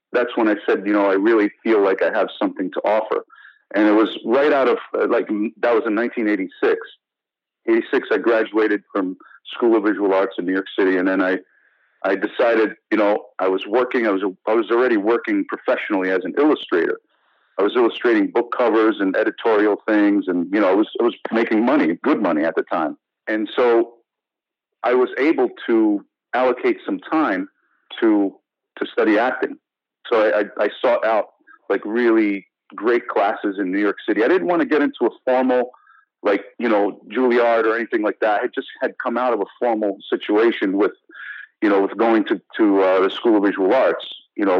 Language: English